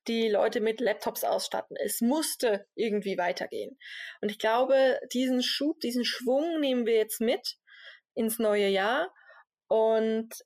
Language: German